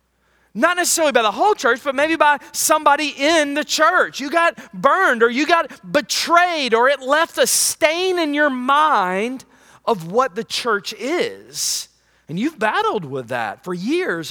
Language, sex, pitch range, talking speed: English, male, 205-295 Hz, 170 wpm